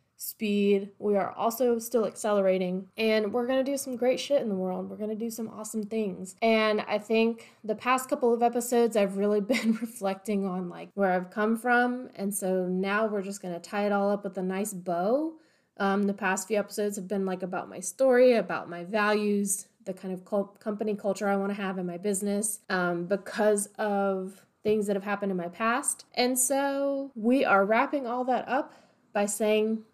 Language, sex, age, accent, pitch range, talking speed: English, female, 20-39, American, 190-225 Hz, 210 wpm